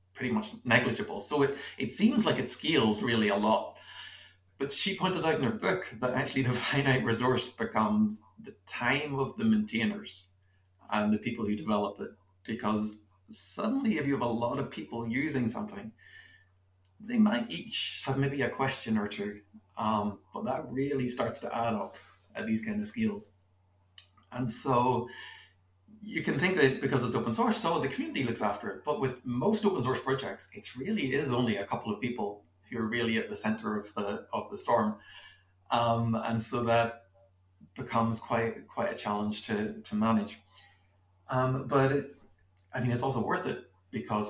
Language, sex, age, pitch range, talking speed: English, male, 30-49, 105-135 Hz, 175 wpm